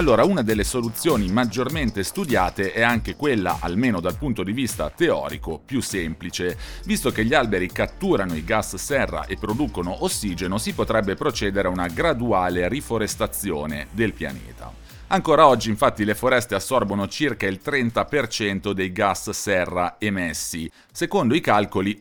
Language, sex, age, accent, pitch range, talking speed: Italian, male, 40-59, native, 95-125 Hz, 145 wpm